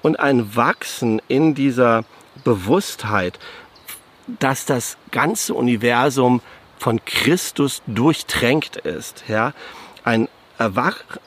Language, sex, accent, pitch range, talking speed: German, male, German, 110-135 Hz, 85 wpm